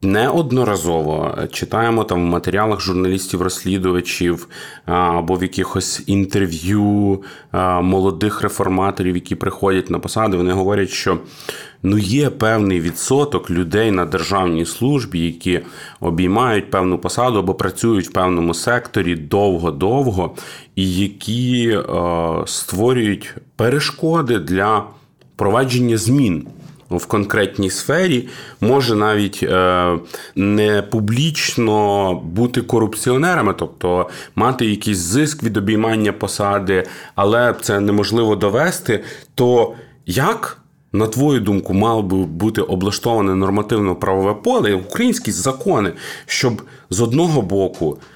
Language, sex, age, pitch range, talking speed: Ukrainian, male, 30-49, 95-125 Hz, 100 wpm